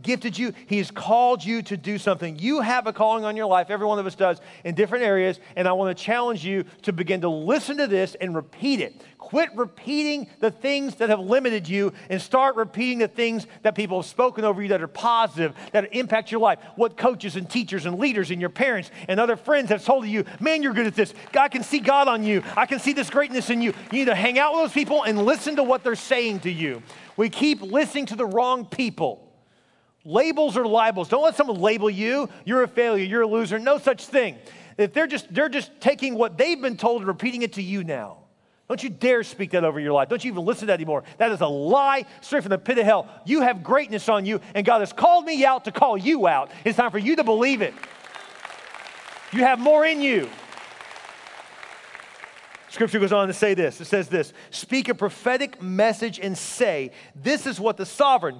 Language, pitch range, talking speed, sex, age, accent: English, 195-260 Hz, 230 wpm, male, 40-59, American